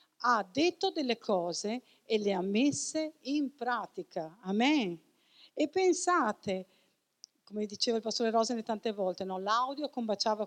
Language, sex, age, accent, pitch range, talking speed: Italian, female, 50-69, native, 190-255 Hz, 125 wpm